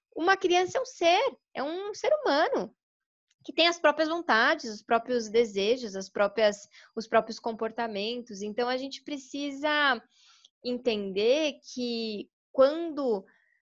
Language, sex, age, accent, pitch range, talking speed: Portuguese, female, 20-39, Brazilian, 205-260 Hz, 130 wpm